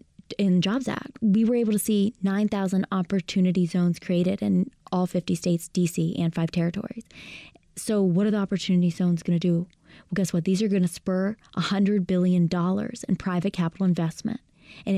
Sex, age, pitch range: female, 20-39, 175-205 Hz